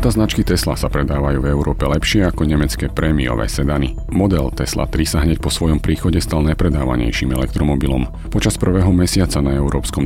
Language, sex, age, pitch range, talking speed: Slovak, male, 40-59, 75-90 Hz, 160 wpm